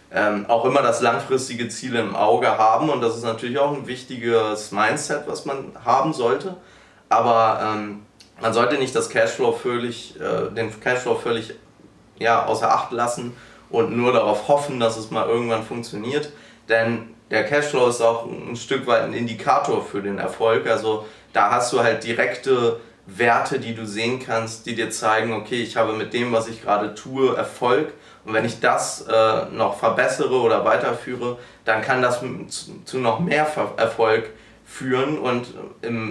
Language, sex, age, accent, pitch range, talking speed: German, male, 20-39, German, 110-125 Hz, 175 wpm